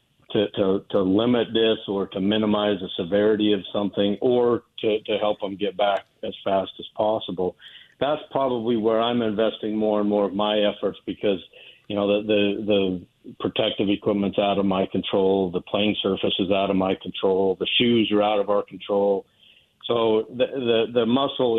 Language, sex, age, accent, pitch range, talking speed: English, male, 50-69, American, 100-110 Hz, 185 wpm